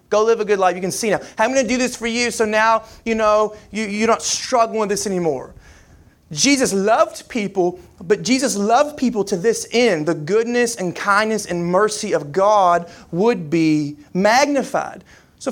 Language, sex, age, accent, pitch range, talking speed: English, male, 30-49, American, 170-225 Hz, 185 wpm